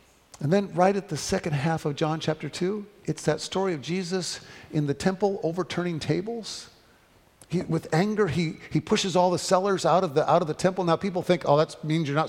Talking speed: 220 wpm